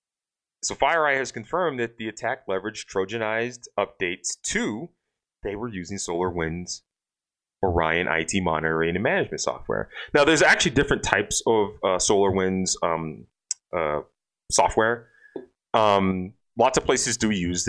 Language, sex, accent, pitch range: English, male, American, 90-115 Hz